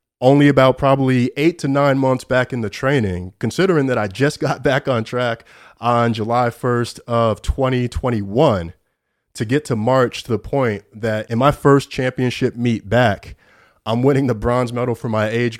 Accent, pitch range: American, 105-125 Hz